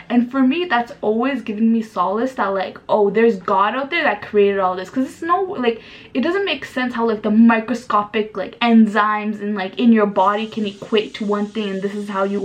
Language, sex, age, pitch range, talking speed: English, female, 10-29, 195-235 Hz, 230 wpm